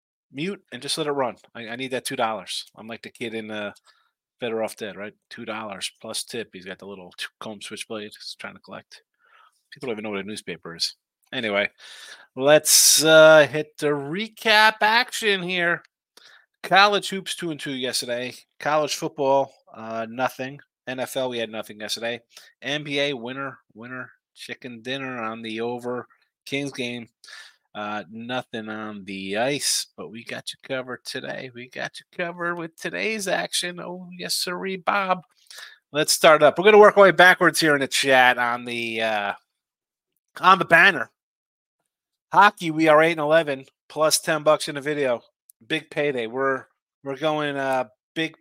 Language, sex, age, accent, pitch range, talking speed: English, male, 30-49, American, 120-160 Hz, 165 wpm